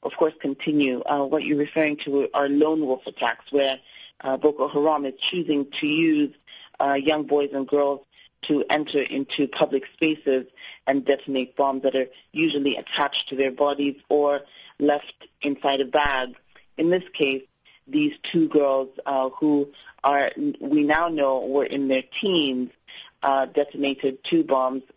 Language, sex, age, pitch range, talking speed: English, female, 40-59, 135-155 Hz, 155 wpm